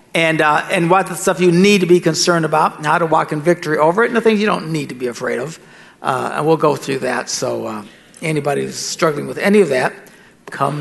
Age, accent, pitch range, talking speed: 60-79, American, 165-225 Hz, 250 wpm